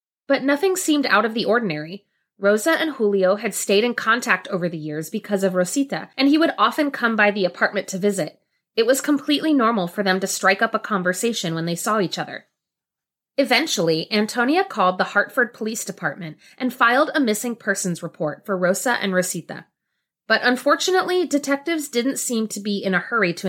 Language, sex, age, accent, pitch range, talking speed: English, female, 30-49, American, 190-255 Hz, 190 wpm